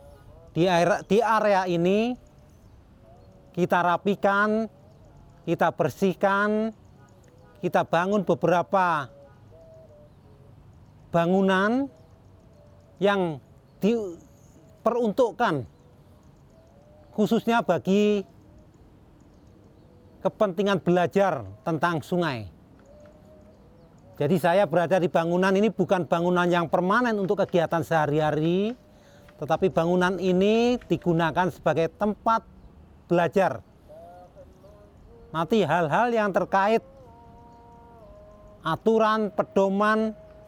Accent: native